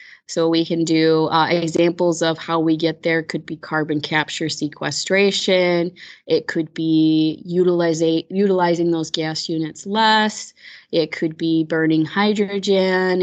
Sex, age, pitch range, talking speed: female, 20-39, 160-175 Hz, 130 wpm